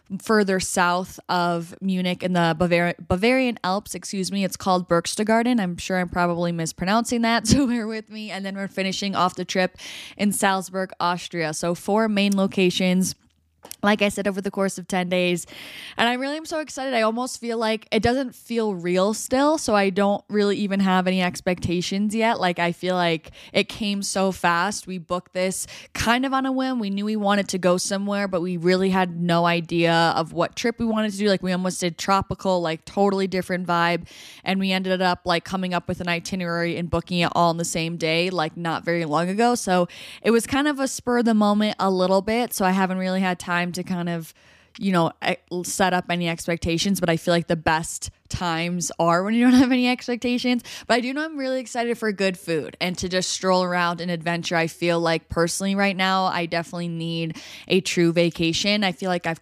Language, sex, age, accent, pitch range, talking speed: English, female, 10-29, American, 175-205 Hz, 215 wpm